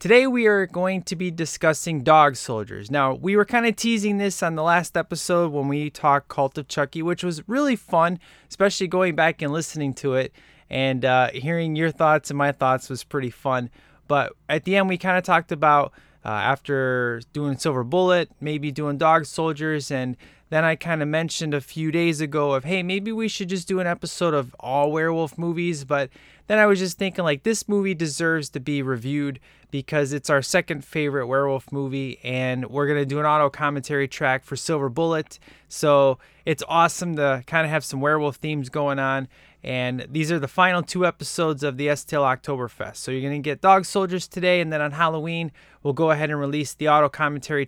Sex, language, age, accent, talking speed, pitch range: male, English, 20-39, American, 205 wpm, 140-170 Hz